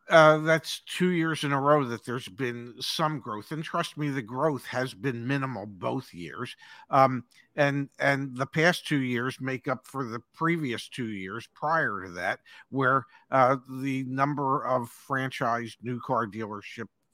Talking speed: 170 wpm